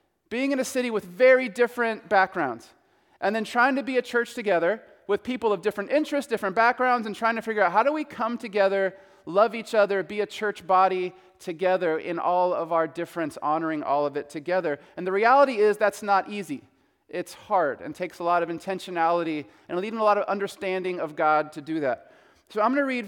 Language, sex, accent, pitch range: English, male, American, 185-235 Hz